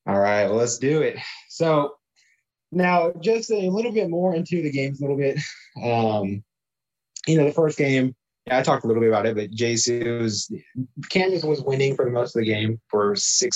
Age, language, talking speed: 20-39, English, 205 wpm